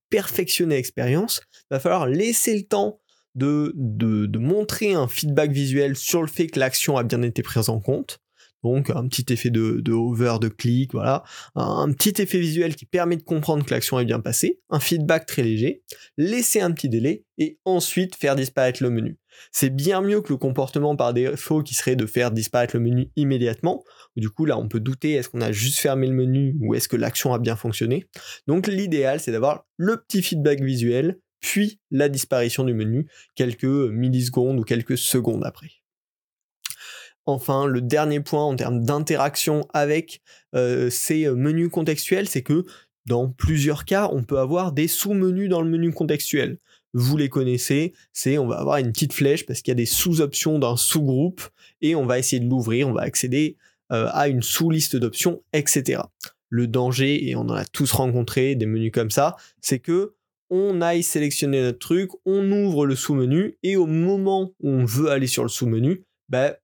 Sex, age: male, 20-39